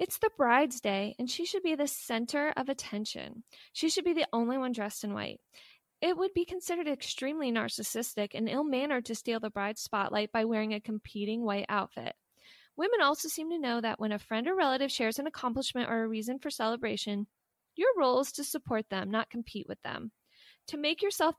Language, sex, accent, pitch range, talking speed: English, female, American, 215-285 Hz, 200 wpm